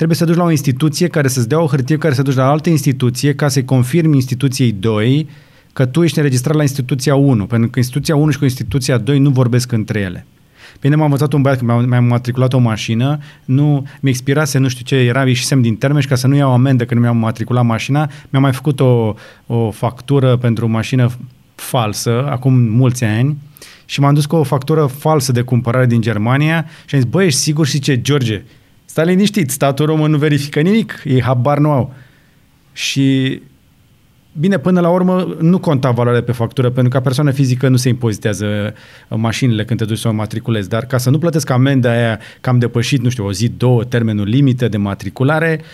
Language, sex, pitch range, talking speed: Romanian, male, 120-150 Hz, 210 wpm